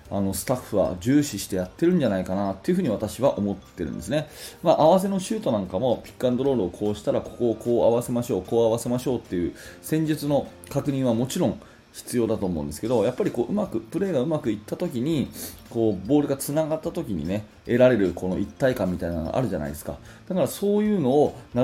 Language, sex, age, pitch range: Japanese, male, 30-49, 100-145 Hz